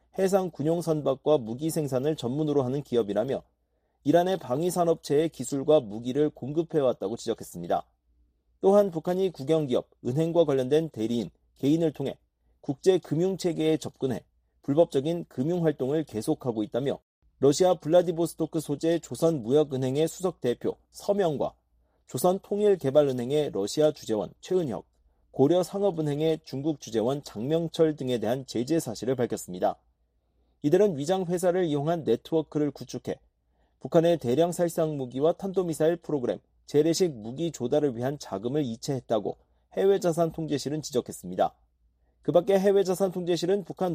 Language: Korean